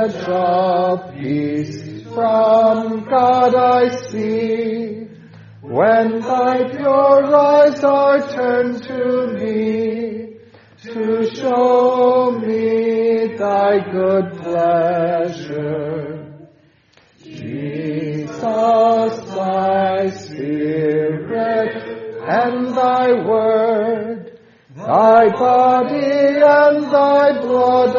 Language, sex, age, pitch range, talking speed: English, male, 40-59, 165-230 Hz, 65 wpm